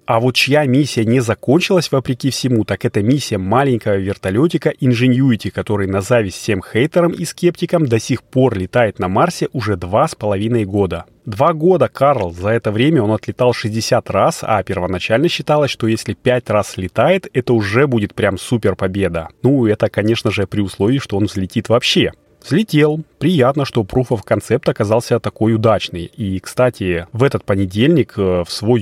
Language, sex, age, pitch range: Russian, male, 30-49, 105-130 Hz